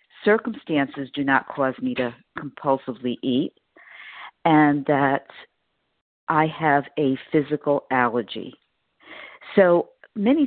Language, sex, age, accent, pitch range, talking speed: English, female, 50-69, American, 140-180 Hz, 95 wpm